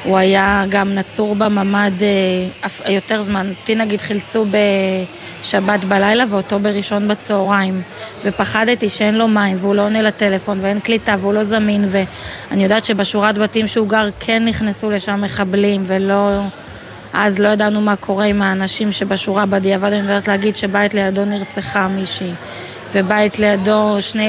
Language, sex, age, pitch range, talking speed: Hebrew, female, 20-39, 195-215 Hz, 155 wpm